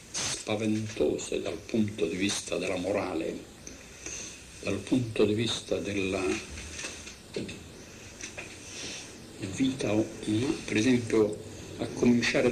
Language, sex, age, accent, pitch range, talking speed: Italian, male, 60-79, native, 110-140 Hz, 80 wpm